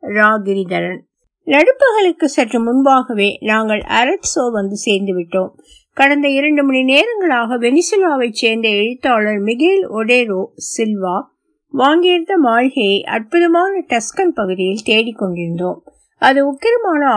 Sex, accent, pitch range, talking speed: female, native, 210-280 Hz, 75 wpm